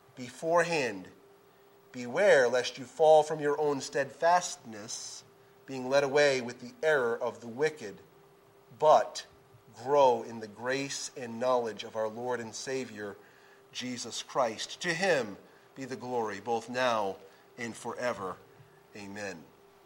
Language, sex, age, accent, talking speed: English, male, 30-49, American, 125 wpm